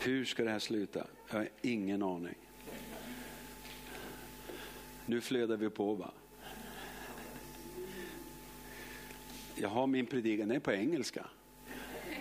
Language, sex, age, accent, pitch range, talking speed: Swedish, male, 50-69, native, 105-120 Hz, 110 wpm